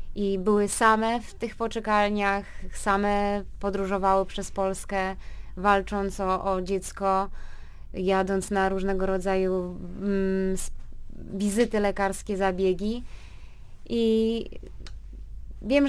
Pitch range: 185-235 Hz